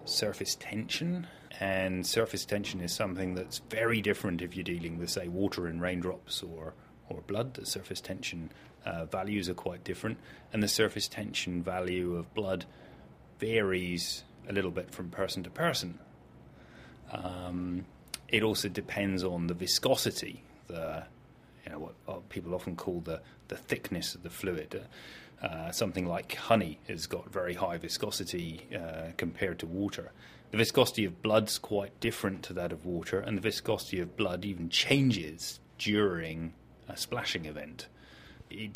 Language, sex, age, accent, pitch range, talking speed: English, male, 30-49, British, 85-100 Hz, 155 wpm